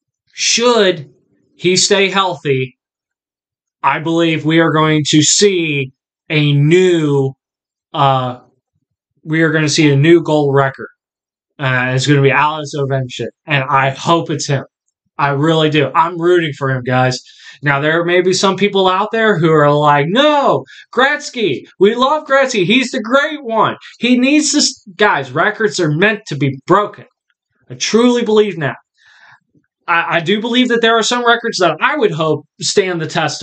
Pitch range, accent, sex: 150-205 Hz, American, male